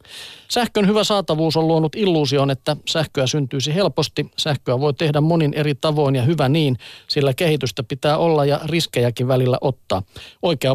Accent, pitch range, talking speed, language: native, 130-160 Hz, 155 wpm, Finnish